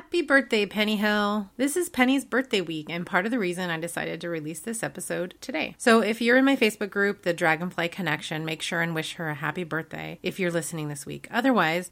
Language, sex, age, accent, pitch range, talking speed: English, female, 30-49, American, 165-230 Hz, 225 wpm